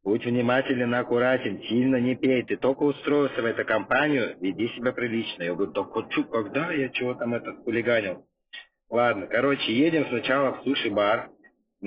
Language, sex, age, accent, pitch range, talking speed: Russian, male, 30-49, native, 110-135 Hz, 155 wpm